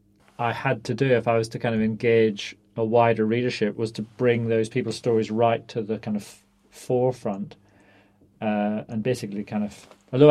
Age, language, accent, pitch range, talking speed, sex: 40-59, English, British, 105-125 Hz, 190 wpm, male